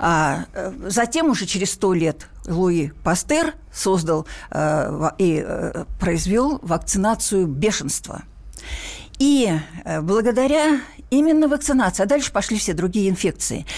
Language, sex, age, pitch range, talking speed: Russian, female, 60-79, 175-245 Hz, 95 wpm